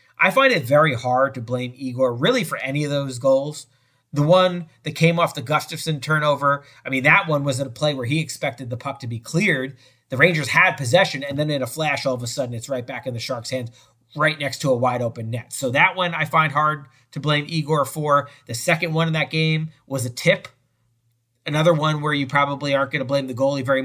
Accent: American